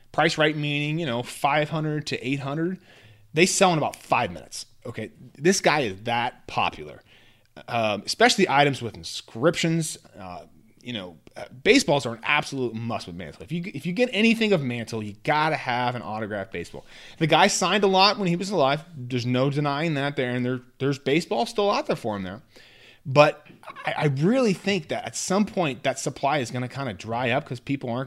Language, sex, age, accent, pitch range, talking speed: English, male, 30-49, American, 120-170 Hz, 200 wpm